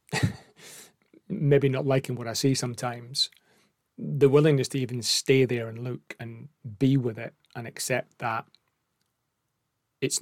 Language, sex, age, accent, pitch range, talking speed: English, male, 30-49, British, 115-135 Hz, 135 wpm